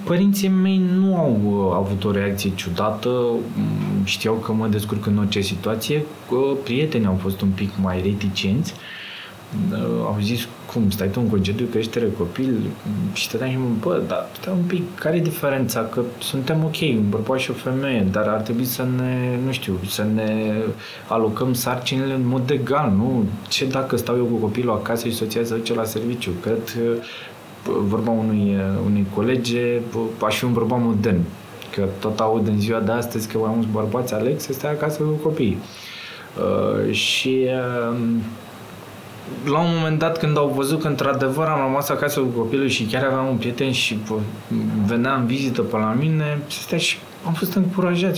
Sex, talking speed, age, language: male, 175 wpm, 20-39, Romanian